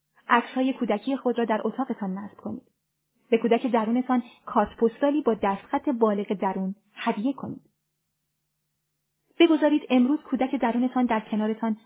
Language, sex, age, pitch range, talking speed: Persian, female, 30-49, 215-280 Hz, 120 wpm